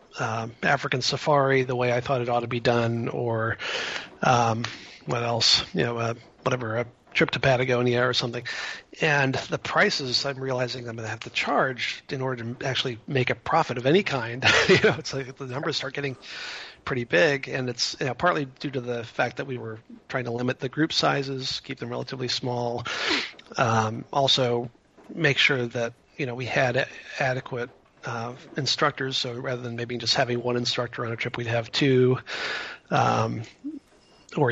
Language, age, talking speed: English, 40-59, 185 wpm